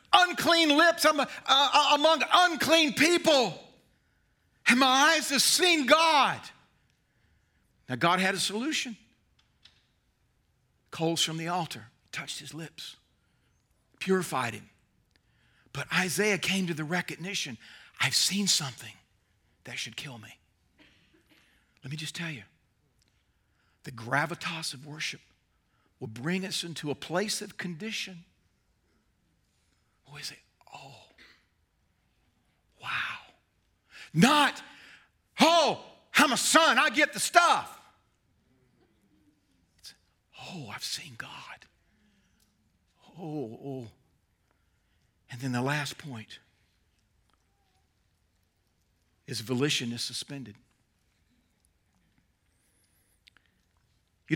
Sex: male